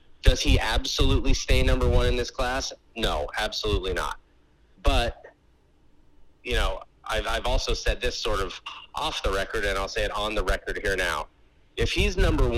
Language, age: English, 30-49